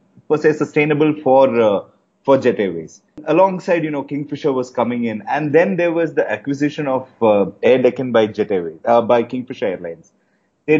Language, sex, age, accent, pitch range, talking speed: English, male, 30-49, Indian, 125-165 Hz, 185 wpm